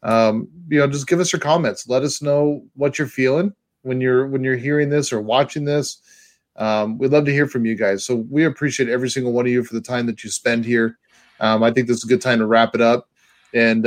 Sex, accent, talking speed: male, American, 255 wpm